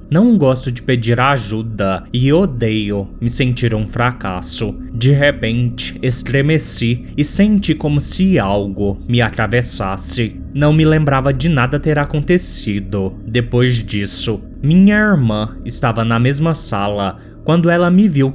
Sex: male